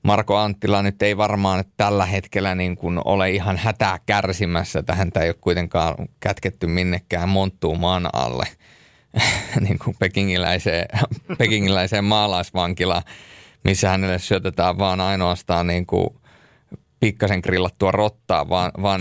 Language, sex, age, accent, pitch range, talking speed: Finnish, male, 30-49, native, 90-105 Hz, 120 wpm